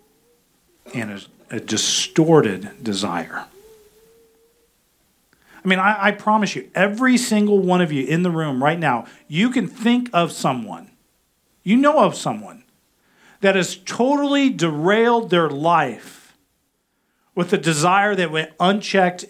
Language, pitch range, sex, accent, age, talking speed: English, 130-195 Hz, male, American, 40-59, 130 wpm